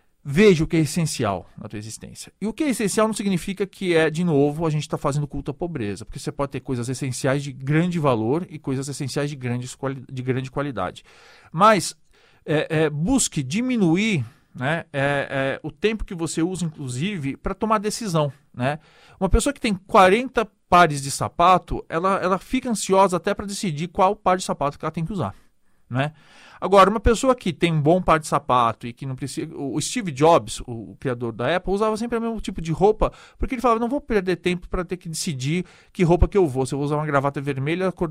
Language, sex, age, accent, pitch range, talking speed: Portuguese, male, 40-59, Brazilian, 145-195 Hz, 210 wpm